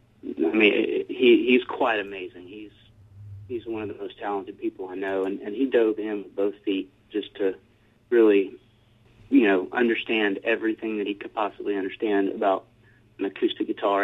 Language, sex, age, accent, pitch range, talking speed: English, male, 30-49, American, 100-135 Hz, 170 wpm